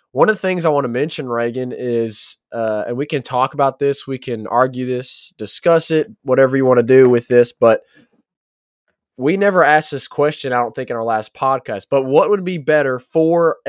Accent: American